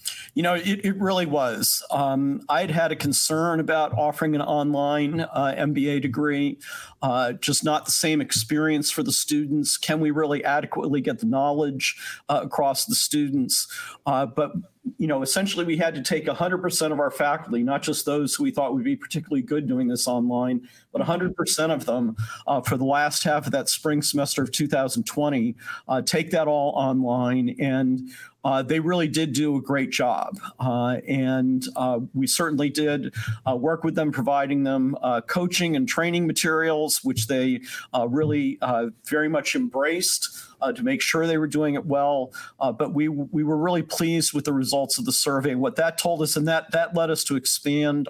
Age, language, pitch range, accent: 50-69, English, 135-165 Hz, American